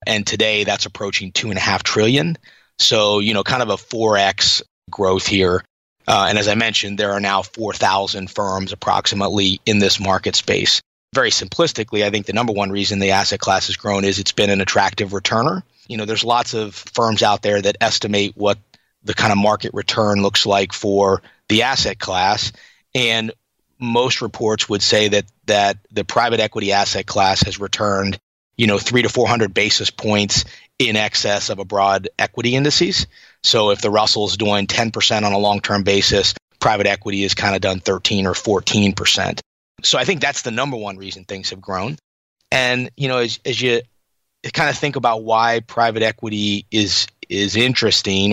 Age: 30-49